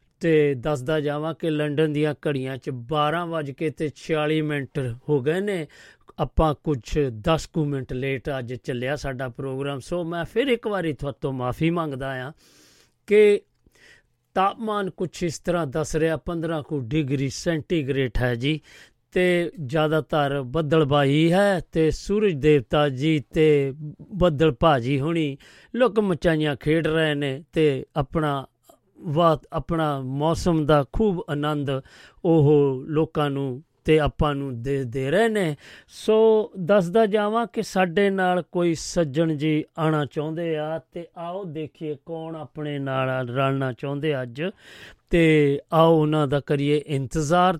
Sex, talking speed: male, 135 wpm